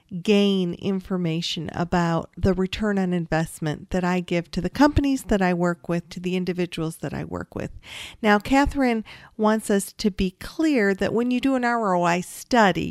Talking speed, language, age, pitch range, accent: 175 wpm, English, 50-69, 175-210 Hz, American